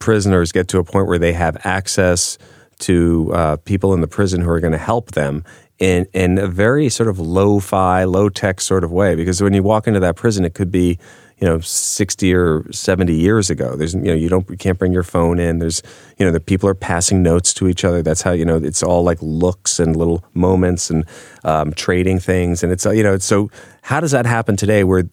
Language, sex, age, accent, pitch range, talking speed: English, male, 30-49, American, 85-95 Hz, 230 wpm